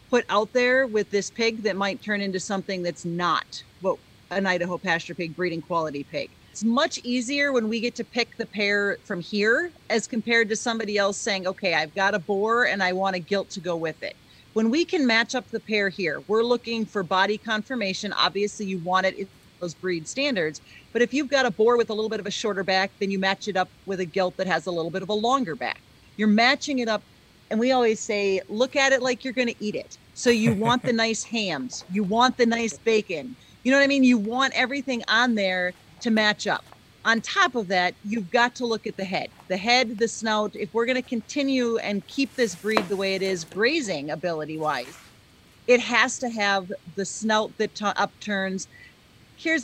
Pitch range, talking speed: 190-240 Hz, 220 wpm